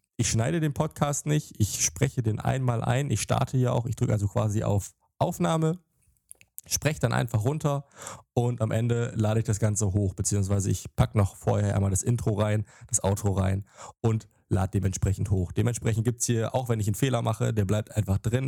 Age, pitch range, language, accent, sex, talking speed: 20-39, 100-125 Hz, German, German, male, 200 wpm